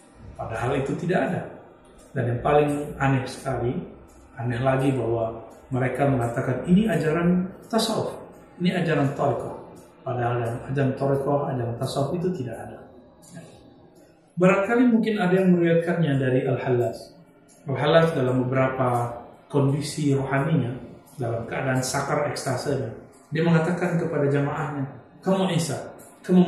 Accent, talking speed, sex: native, 120 wpm, male